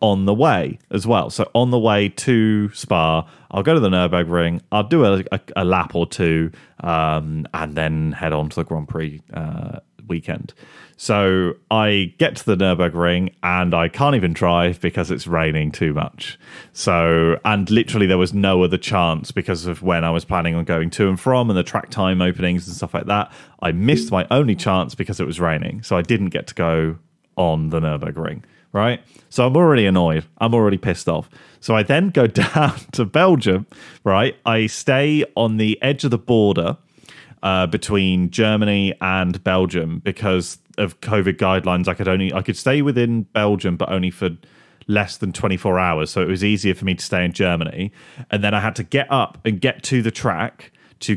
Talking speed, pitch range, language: 195 wpm, 90-115 Hz, English